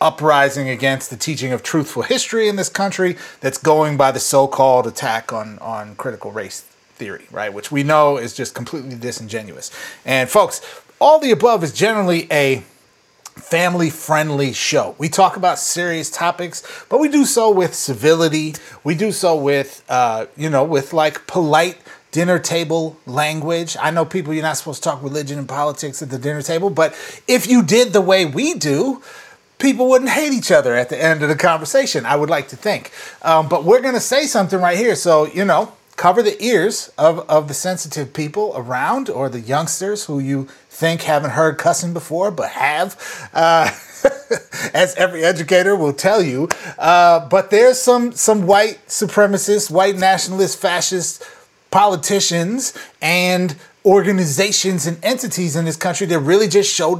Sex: male